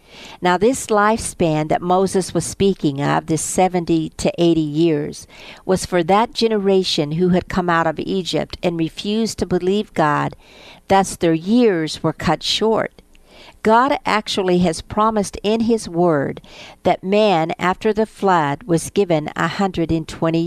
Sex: female